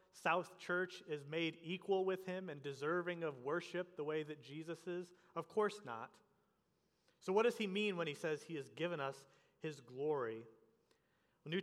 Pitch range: 150-200 Hz